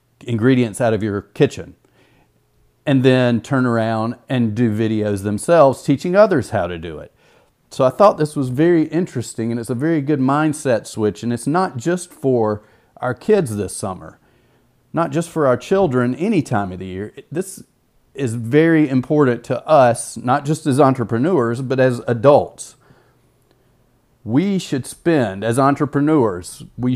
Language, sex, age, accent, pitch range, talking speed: English, male, 40-59, American, 110-140 Hz, 160 wpm